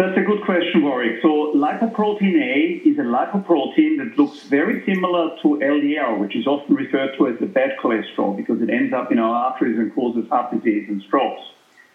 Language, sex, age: English, male, 50-69